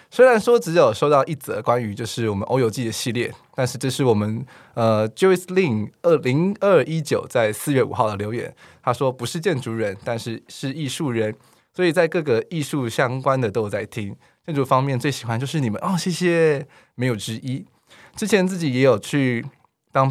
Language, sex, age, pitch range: Chinese, male, 20-39, 115-160 Hz